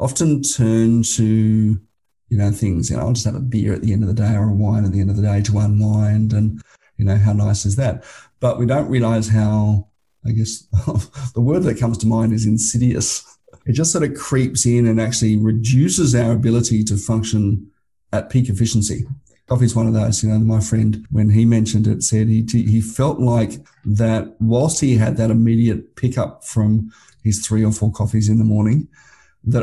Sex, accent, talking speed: male, Australian, 205 wpm